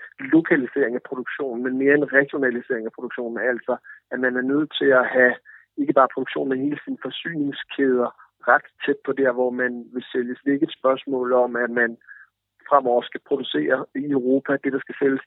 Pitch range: 120-140 Hz